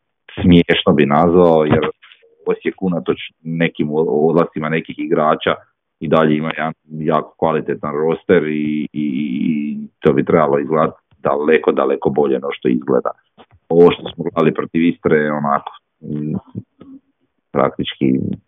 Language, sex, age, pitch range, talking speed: Croatian, male, 40-59, 75-80 Hz, 125 wpm